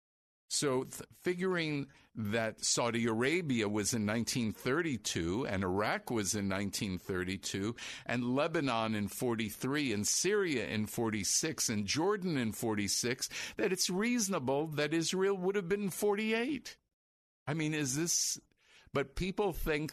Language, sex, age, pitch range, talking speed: English, male, 50-69, 105-165 Hz, 125 wpm